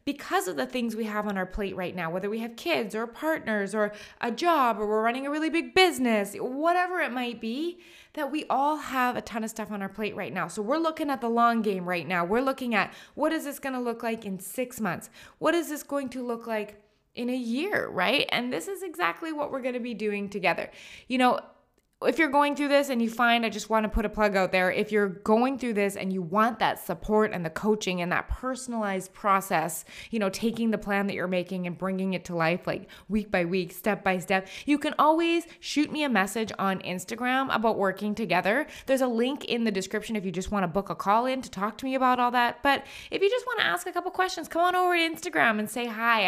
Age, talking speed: 20-39, 250 wpm